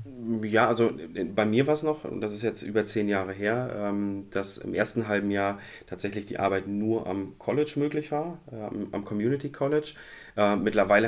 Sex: male